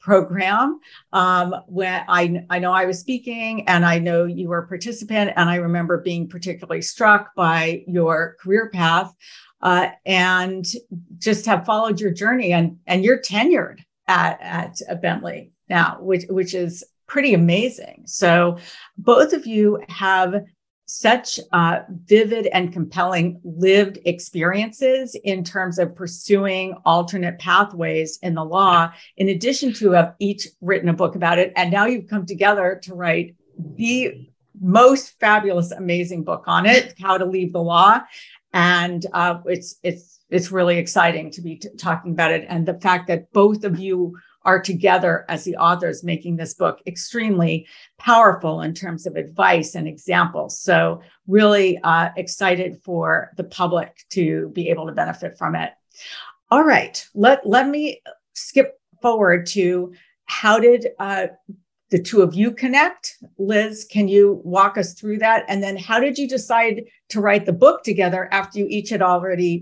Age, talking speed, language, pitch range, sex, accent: 50-69, 160 wpm, English, 175-210 Hz, female, American